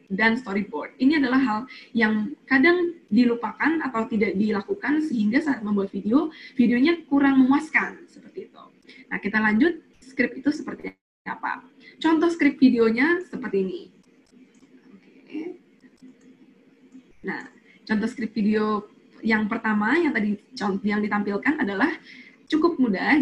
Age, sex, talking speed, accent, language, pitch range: 20-39, female, 115 wpm, native, Indonesian, 215-280 Hz